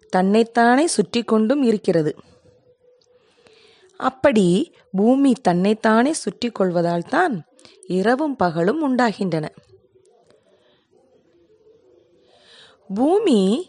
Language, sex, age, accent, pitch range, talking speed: Tamil, female, 20-39, native, 195-275 Hz, 50 wpm